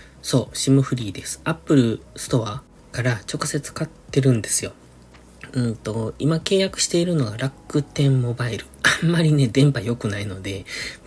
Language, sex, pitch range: Japanese, male, 105-145 Hz